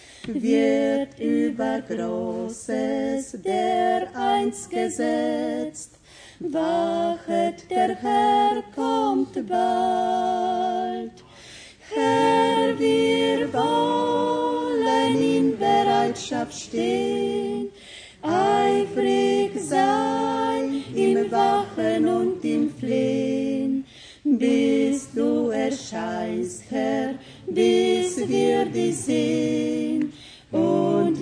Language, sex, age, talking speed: Croatian, female, 30-49, 65 wpm